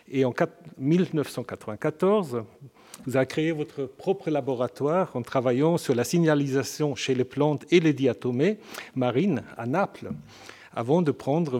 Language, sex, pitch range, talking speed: French, male, 130-170 Hz, 135 wpm